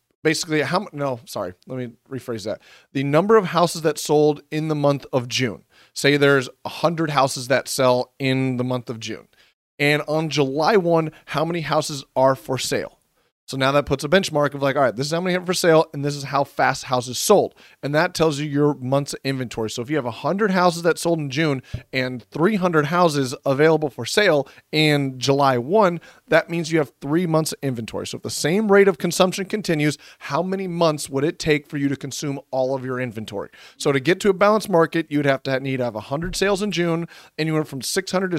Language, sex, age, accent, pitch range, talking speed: English, male, 30-49, American, 135-165 Hz, 225 wpm